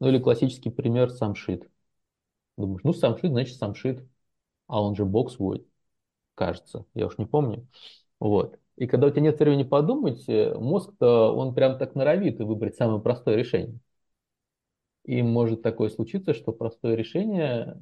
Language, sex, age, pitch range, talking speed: Russian, male, 20-39, 105-135 Hz, 150 wpm